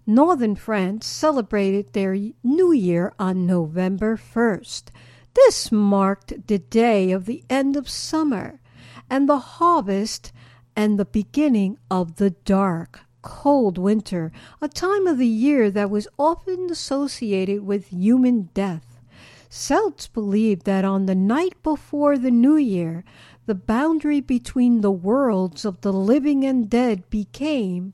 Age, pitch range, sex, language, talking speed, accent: 60-79, 185-265 Hz, female, English, 135 wpm, American